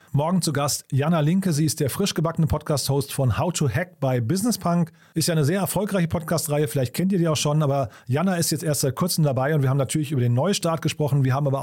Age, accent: 30-49, German